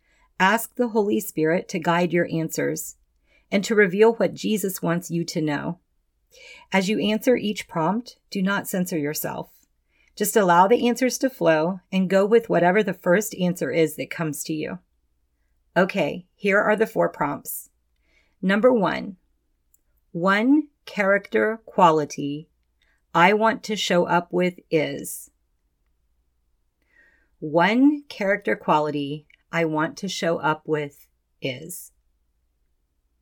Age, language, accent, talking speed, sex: 40-59, English, American, 130 wpm, female